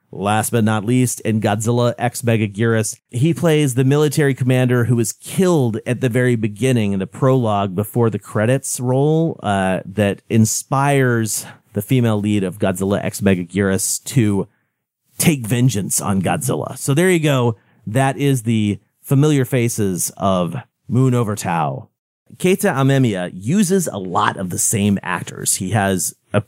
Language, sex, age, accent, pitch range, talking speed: English, male, 30-49, American, 100-135 Hz, 150 wpm